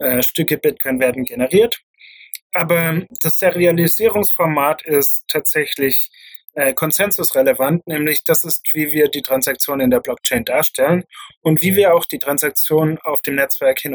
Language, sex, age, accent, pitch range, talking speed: German, male, 30-49, German, 150-195 Hz, 140 wpm